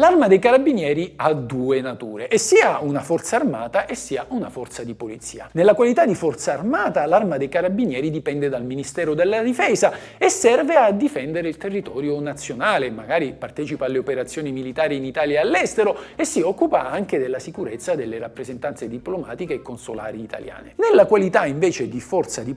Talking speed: 170 wpm